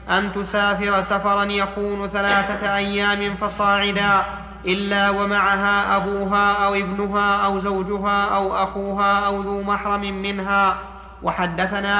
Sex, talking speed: male, 105 wpm